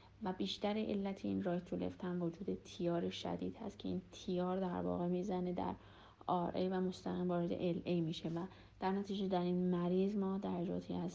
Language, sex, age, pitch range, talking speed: Persian, female, 30-49, 165-195 Hz, 165 wpm